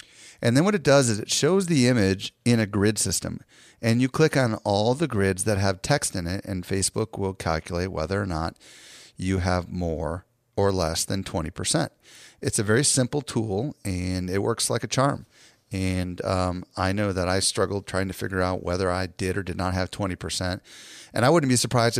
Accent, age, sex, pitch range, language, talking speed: American, 40-59, male, 95-120 Hz, English, 205 wpm